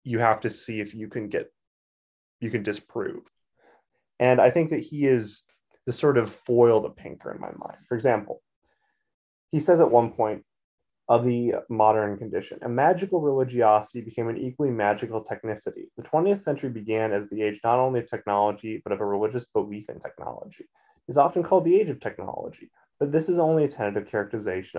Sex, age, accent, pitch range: male, 20-39, American, 110-160 Hz